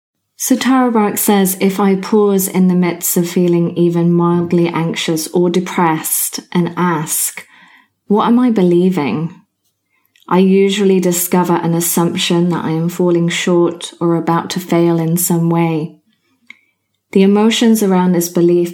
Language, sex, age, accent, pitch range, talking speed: English, female, 30-49, British, 170-185 Hz, 140 wpm